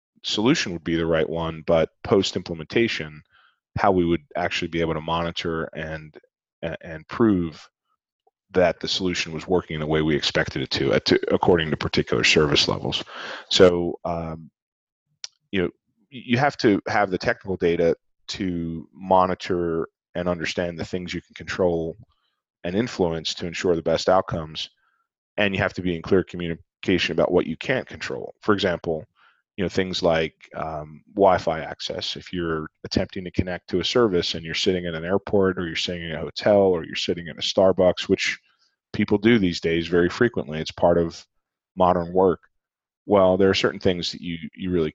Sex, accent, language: male, American, English